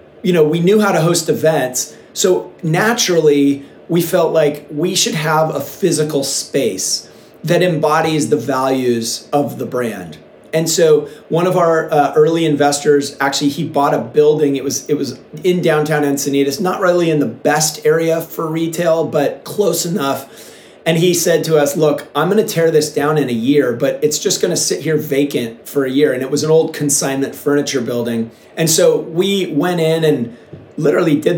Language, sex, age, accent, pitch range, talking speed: English, male, 40-59, American, 140-165 Hz, 185 wpm